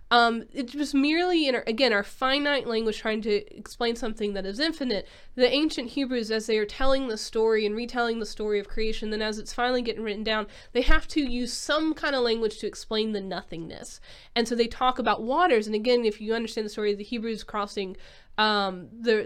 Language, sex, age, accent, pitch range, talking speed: English, female, 20-39, American, 215-255 Hz, 220 wpm